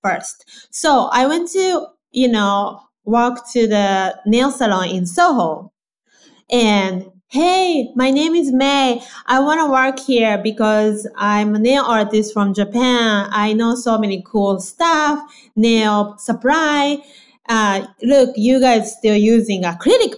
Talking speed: 140 wpm